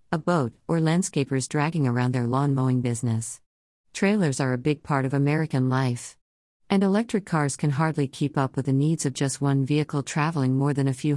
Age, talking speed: 50-69, 200 wpm